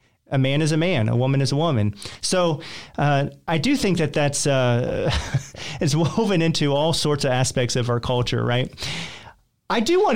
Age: 40-59